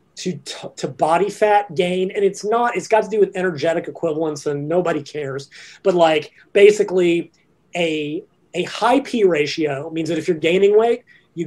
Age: 30-49